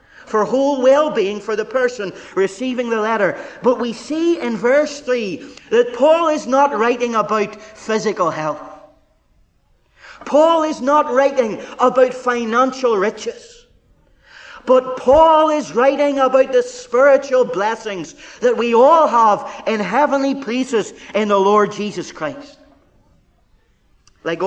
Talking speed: 130 wpm